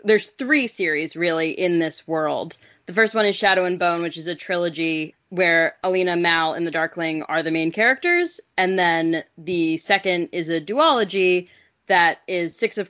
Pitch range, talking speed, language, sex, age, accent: 165-205 Hz, 180 wpm, English, female, 20-39, American